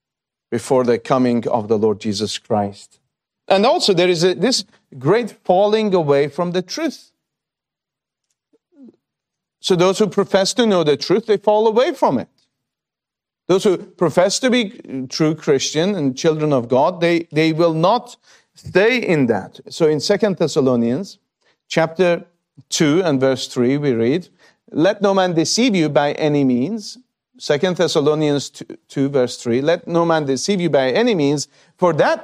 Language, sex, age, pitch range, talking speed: English, male, 50-69, 140-195 Hz, 160 wpm